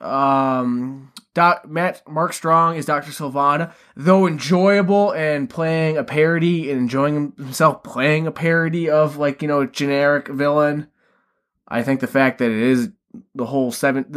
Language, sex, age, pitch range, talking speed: English, male, 20-39, 125-170 Hz, 155 wpm